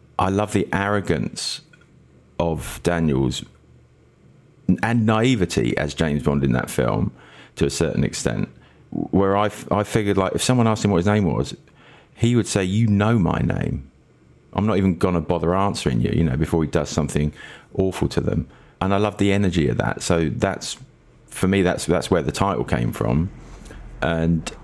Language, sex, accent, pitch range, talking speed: English, male, British, 80-100 Hz, 180 wpm